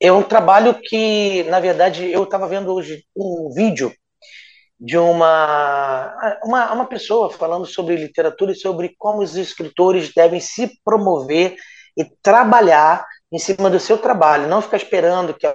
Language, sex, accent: Portuguese, male, Brazilian